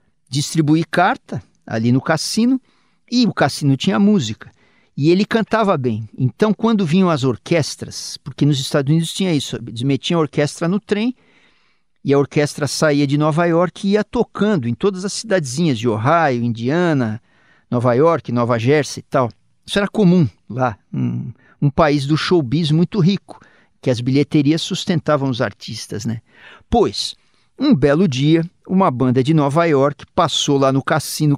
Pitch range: 135-200 Hz